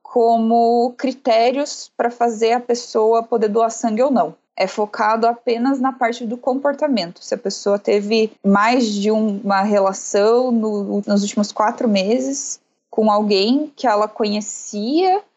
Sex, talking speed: female, 145 wpm